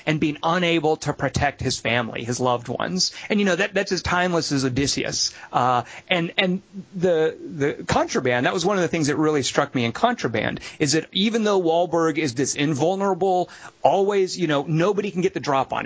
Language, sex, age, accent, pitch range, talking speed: English, male, 30-49, American, 135-180 Hz, 205 wpm